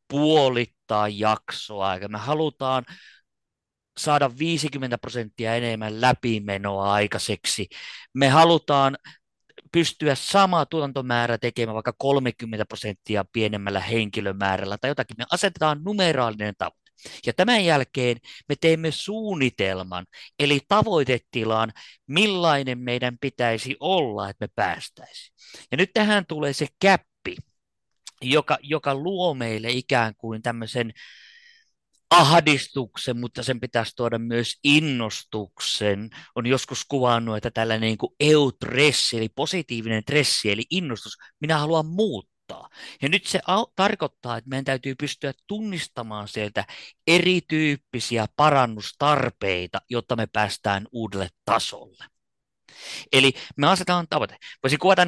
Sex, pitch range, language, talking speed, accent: male, 110-155 Hz, Finnish, 105 wpm, native